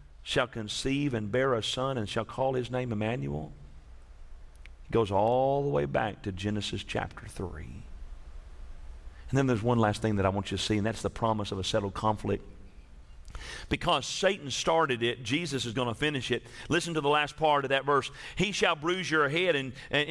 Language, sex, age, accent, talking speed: English, male, 40-59, American, 200 wpm